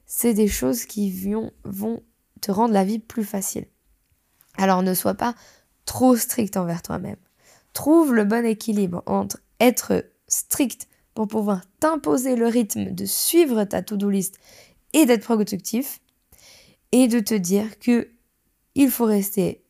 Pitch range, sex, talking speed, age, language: 195-245 Hz, female, 140 wpm, 20-39, French